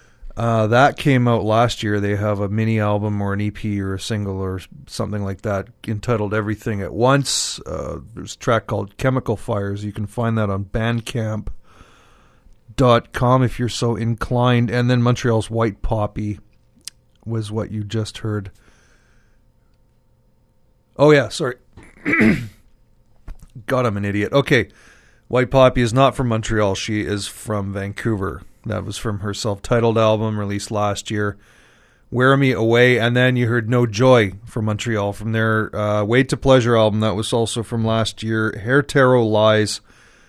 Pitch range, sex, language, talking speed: 105-120 Hz, male, English, 160 wpm